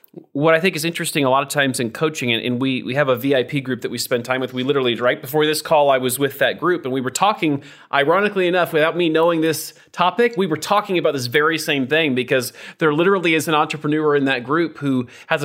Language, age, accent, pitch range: English, 30-49, American, 130-160 Hz